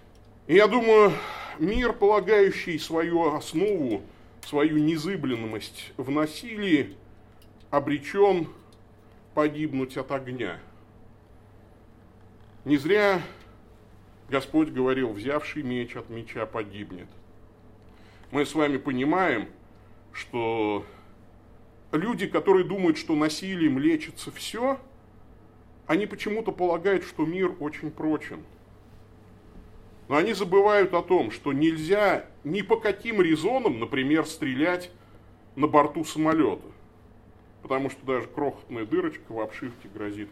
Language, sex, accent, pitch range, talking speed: Russian, male, native, 110-170 Hz, 100 wpm